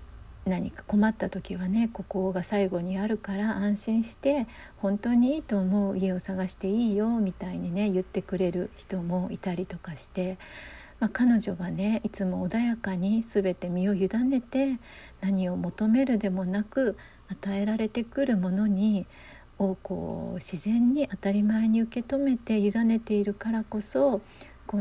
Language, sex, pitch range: Japanese, female, 190-230 Hz